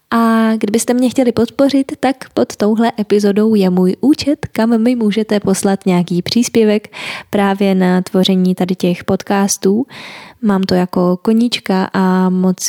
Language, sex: Czech, female